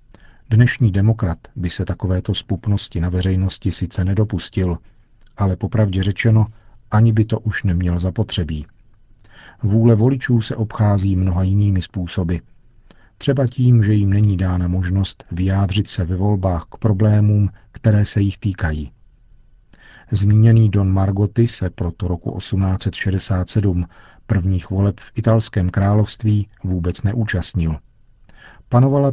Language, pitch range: Czech, 95-110 Hz